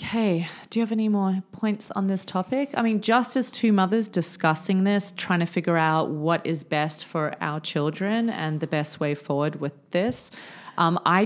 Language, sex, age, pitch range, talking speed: English, female, 30-49, 155-190 Hz, 195 wpm